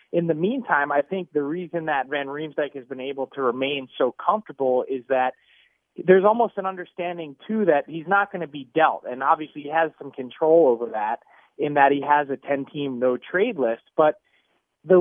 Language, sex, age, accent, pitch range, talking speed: English, male, 30-49, American, 135-175 Hz, 195 wpm